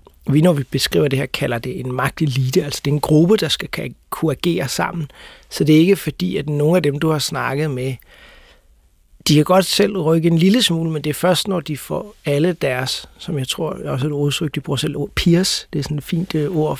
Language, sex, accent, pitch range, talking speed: Danish, male, native, 130-160 Hz, 245 wpm